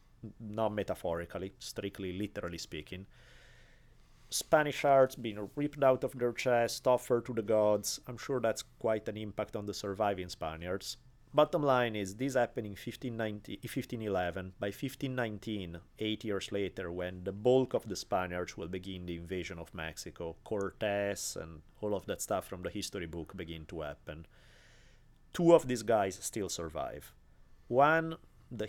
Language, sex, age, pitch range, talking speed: English, male, 30-49, 95-130 Hz, 155 wpm